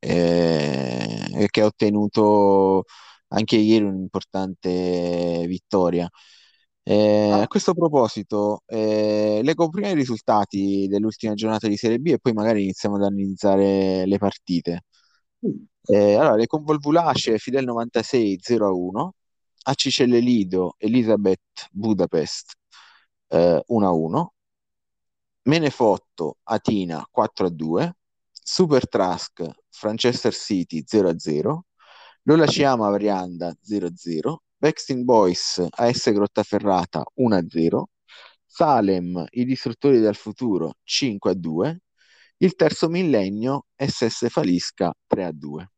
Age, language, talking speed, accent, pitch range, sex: 20-39, Italian, 95 wpm, native, 95-115 Hz, male